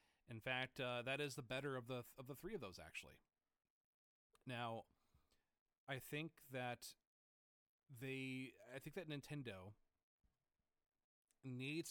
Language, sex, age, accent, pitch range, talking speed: English, male, 30-49, American, 115-150 Hz, 120 wpm